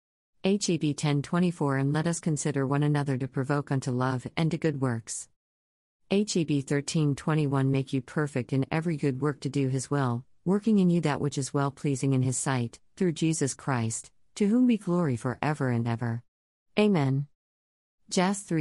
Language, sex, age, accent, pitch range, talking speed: English, female, 40-59, American, 130-165 Hz, 170 wpm